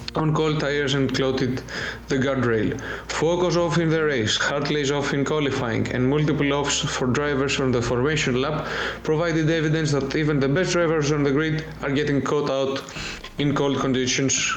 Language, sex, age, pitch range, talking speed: Greek, male, 20-39, 130-150 Hz, 175 wpm